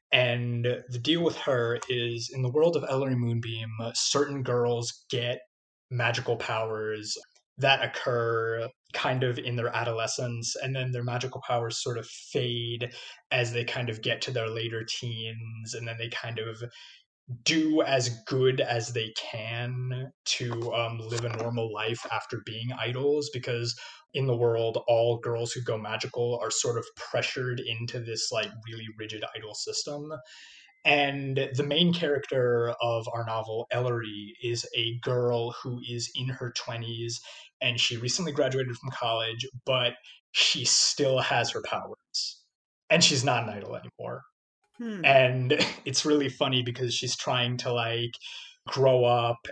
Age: 20-39